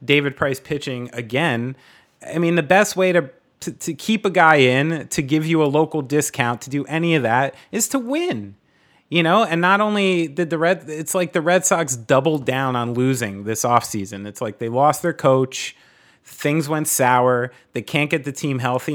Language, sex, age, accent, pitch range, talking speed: English, male, 30-49, American, 125-160 Hz, 200 wpm